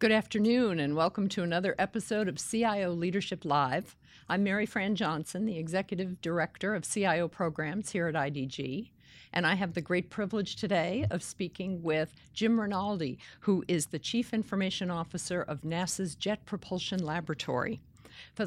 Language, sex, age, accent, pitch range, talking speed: English, female, 50-69, American, 160-205 Hz, 155 wpm